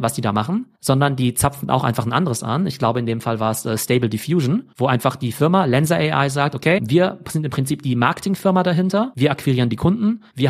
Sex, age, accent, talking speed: male, 40-59, German, 240 wpm